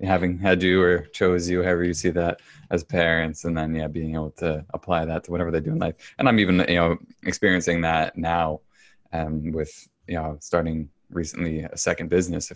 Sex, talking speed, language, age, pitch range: male, 210 wpm, English, 20-39, 80-90 Hz